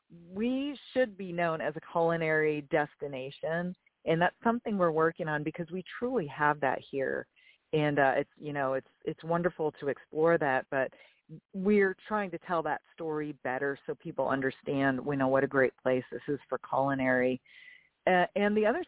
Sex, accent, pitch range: female, American, 145-180 Hz